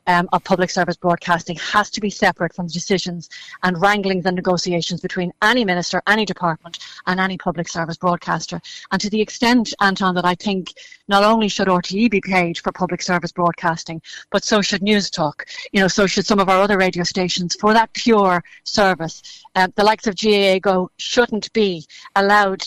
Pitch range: 180-205 Hz